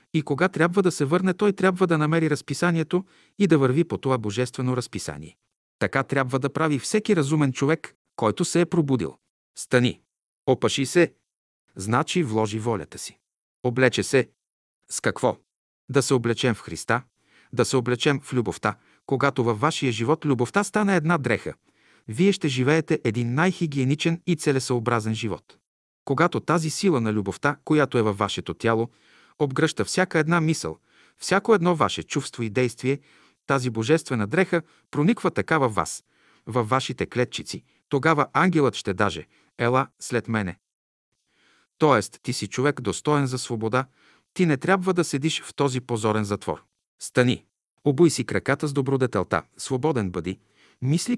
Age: 50-69